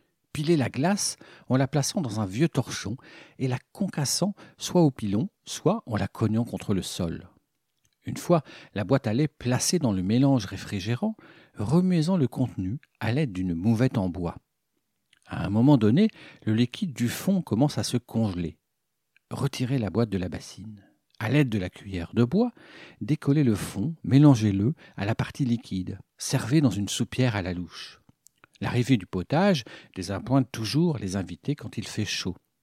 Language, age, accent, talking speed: French, 50-69, French, 170 wpm